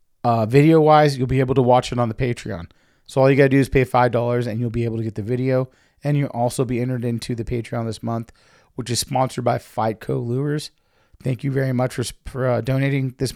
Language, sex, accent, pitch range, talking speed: English, male, American, 115-135 Hz, 245 wpm